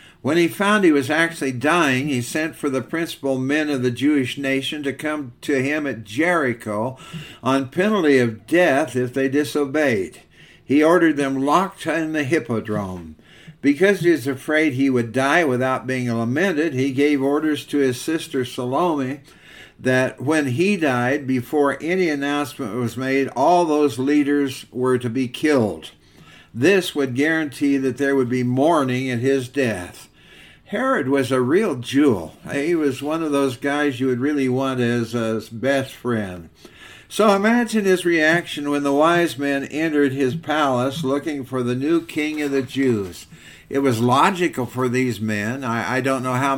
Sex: male